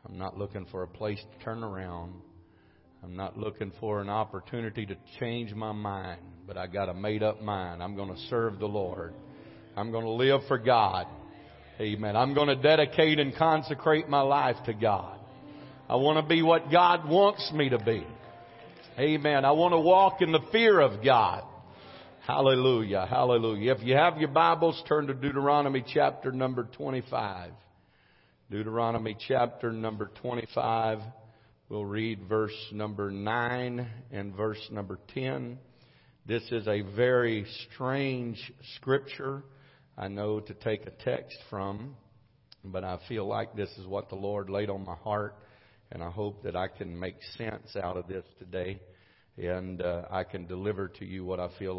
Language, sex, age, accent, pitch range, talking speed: English, male, 50-69, American, 100-130 Hz, 165 wpm